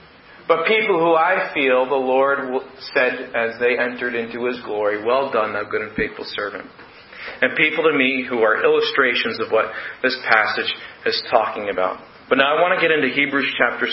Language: English